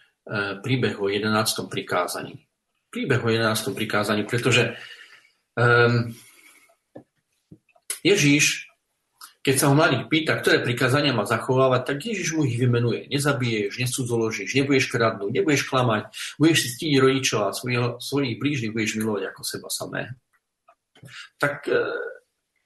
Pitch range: 110-135 Hz